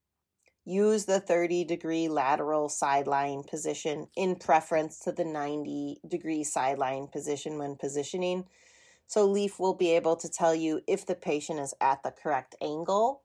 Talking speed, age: 150 wpm, 30-49